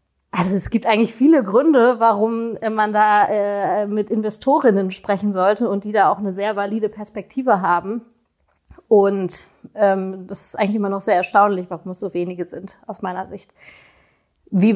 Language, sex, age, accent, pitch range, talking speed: German, female, 30-49, German, 195-220 Hz, 165 wpm